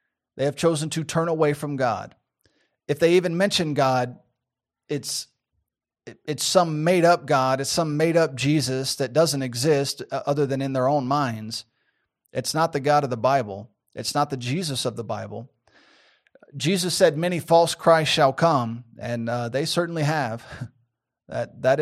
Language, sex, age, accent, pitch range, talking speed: English, male, 30-49, American, 130-165 Hz, 170 wpm